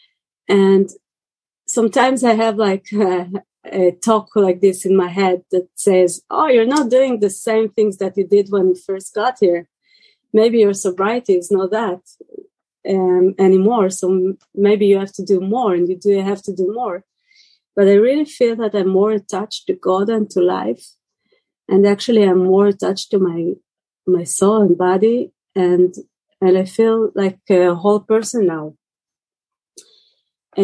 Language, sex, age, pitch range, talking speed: English, female, 30-49, 185-220 Hz, 170 wpm